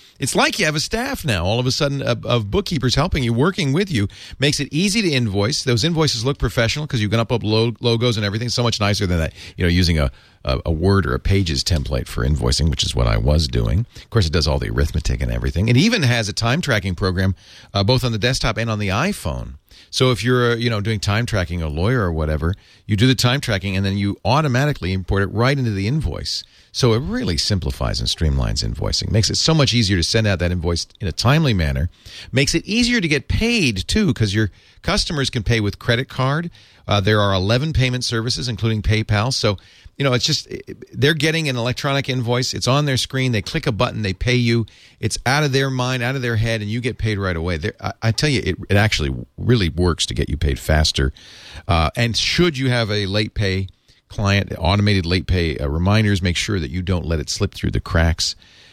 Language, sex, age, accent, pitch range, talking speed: English, male, 40-59, American, 95-125 Hz, 235 wpm